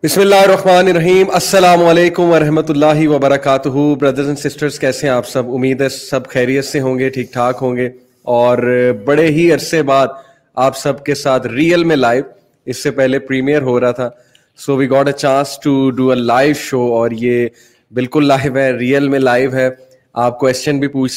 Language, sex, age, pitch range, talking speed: Urdu, male, 20-39, 120-140 Hz, 195 wpm